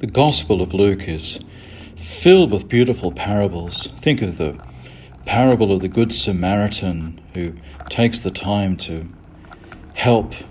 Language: English